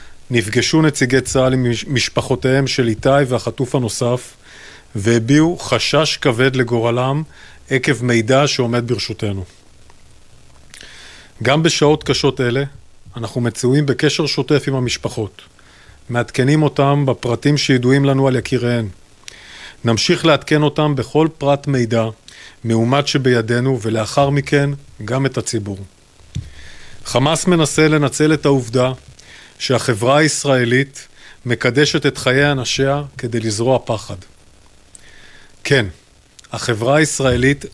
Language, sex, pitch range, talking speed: Hebrew, male, 115-140 Hz, 100 wpm